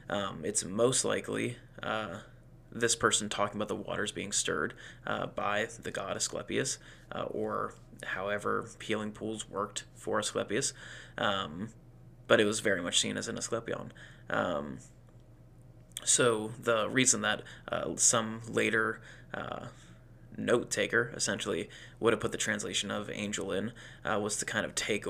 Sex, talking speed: male, 145 wpm